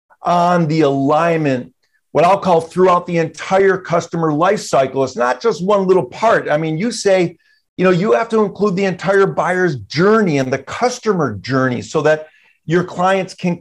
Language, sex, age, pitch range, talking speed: English, male, 50-69, 140-185 Hz, 180 wpm